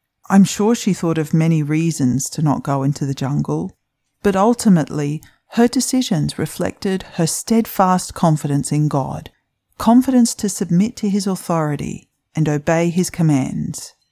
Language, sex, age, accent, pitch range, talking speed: English, female, 40-59, Australian, 150-195 Hz, 140 wpm